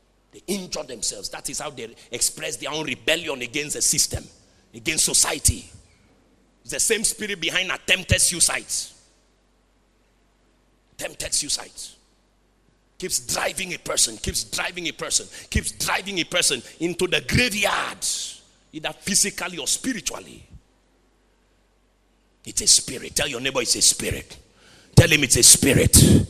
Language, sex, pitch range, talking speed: English, male, 180-265 Hz, 130 wpm